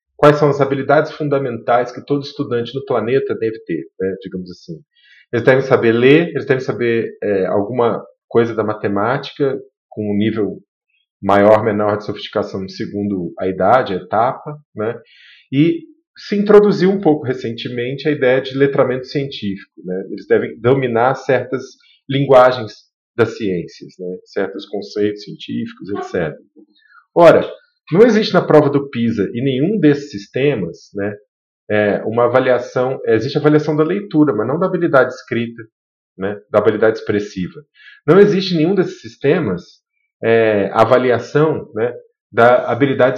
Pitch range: 110-150 Hz